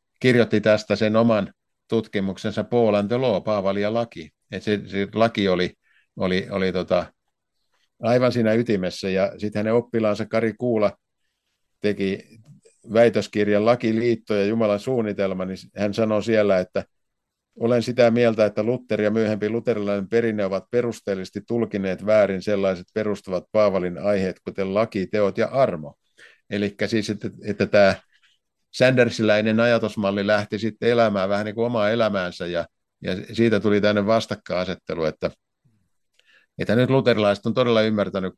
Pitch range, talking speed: 100-115 Hz, 140 wpm